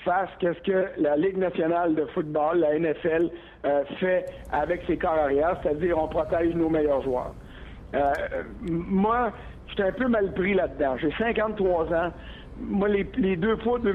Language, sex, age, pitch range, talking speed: French, male, 60-79, 165-205 Hz, 170 wpm